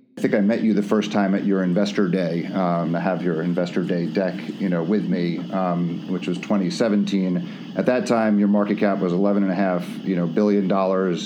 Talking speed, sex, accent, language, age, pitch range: 225 wpm, male, American, English, 40-59, 95-110 Hz